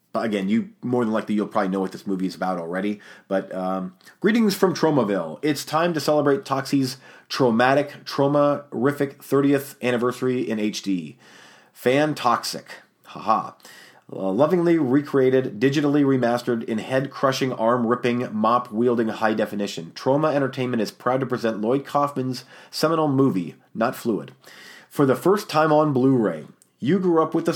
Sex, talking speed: male, 150 wpm